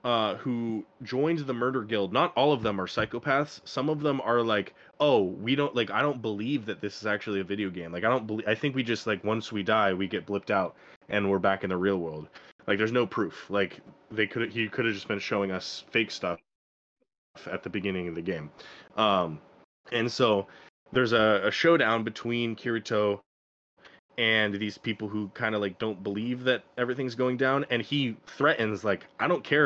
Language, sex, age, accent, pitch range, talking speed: English, male, 20-39, American, 100-125 Hz, 210 wpm